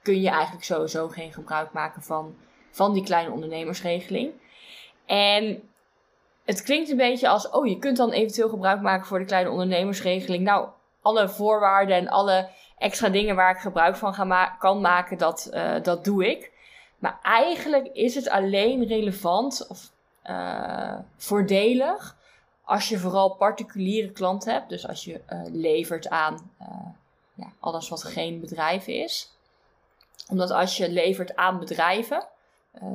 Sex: female